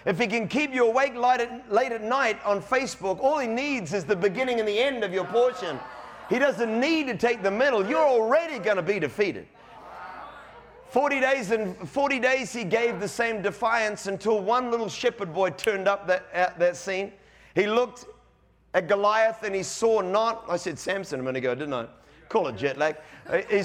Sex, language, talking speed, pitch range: male, English, 205 wpm, 195-260 Hz